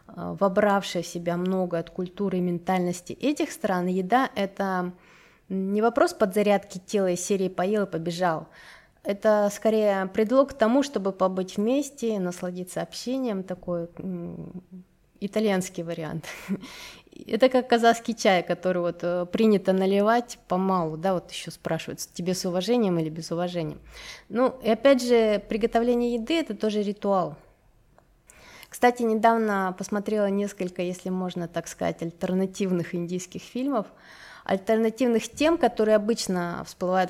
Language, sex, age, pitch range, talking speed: Russian, female, 20-39, 180-230 Hz, 125 wpm